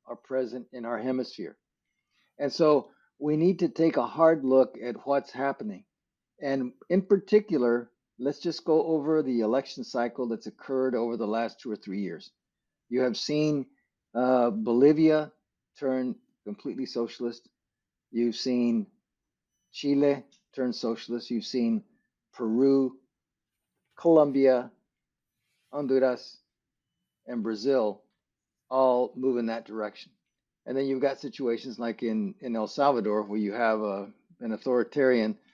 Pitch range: 115-140 Hz